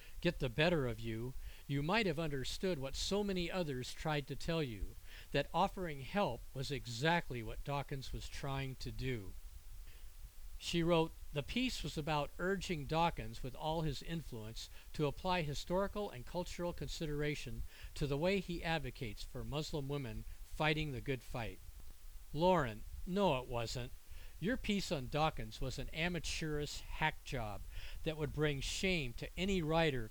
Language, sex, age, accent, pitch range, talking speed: English, male, 50-69, American, 115-170 Hz, 155 wpm